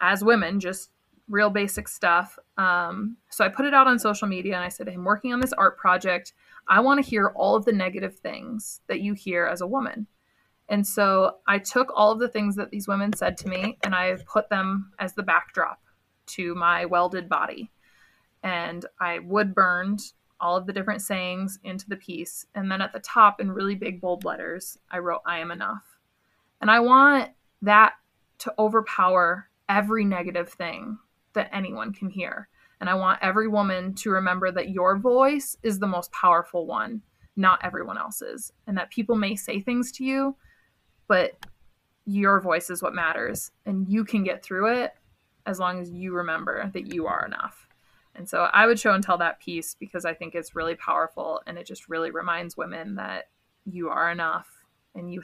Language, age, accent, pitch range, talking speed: English, 20-39, American, 180-215 Hz, 195 wpm